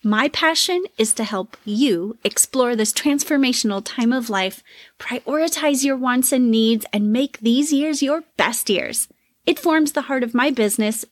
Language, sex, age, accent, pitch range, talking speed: English, female, 30-49, American, 210-280 Hz, 165 wpm